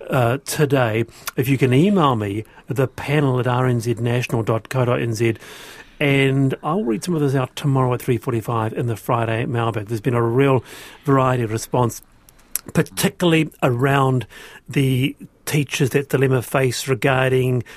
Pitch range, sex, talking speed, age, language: 120-170 Hz, male, 140 wpm, 40-59, English